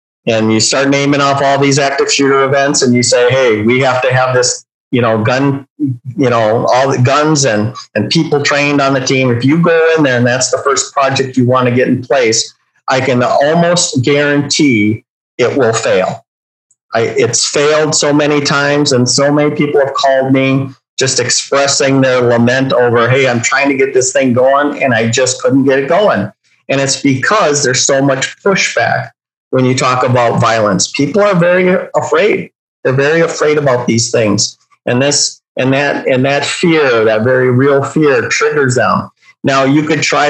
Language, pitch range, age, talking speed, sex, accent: English, 130-145 Hz, 50-69, 190 wpm, male, American